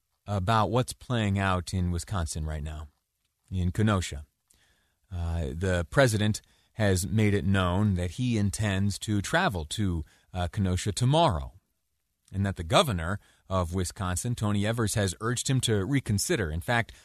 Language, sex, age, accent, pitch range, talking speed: English, male, 30-49, American, 85-105 Hz, 145 wpm